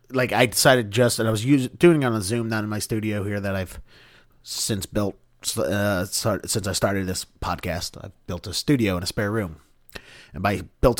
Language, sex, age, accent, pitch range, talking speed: English, male, 30-49, American, 95-125 Hz, 220 wpm